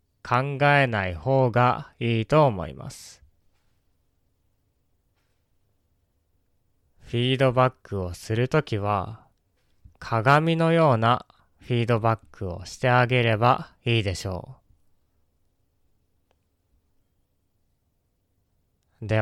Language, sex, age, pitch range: Japanese, male, 20-39, 90-120 Hz